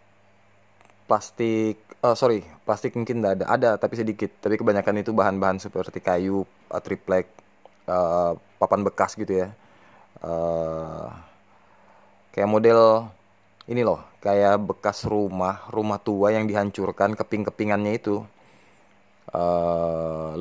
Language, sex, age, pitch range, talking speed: Indonesian, male, 20-39, 90-105 Hz, 110 wpm